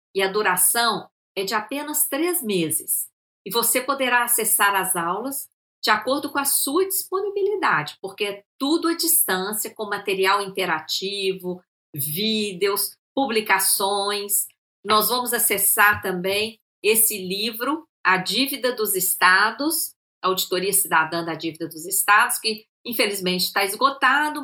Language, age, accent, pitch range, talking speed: Portuguese, 50-69, Brazilian, 200-275 Hz, 125 wpm